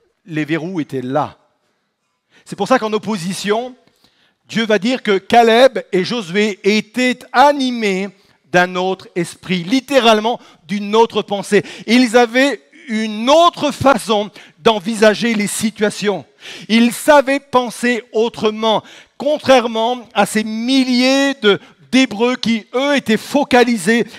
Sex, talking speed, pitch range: male, 115 wpm, 185-235 Hz